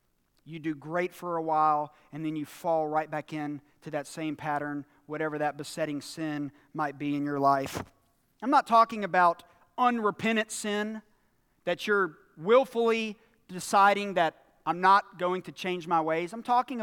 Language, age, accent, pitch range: English, 40-59, American, 155-225 Hz